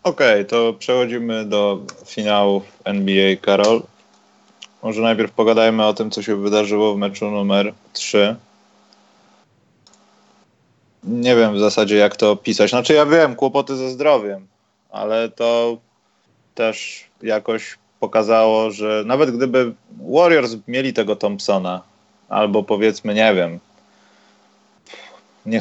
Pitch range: 100-115 Hz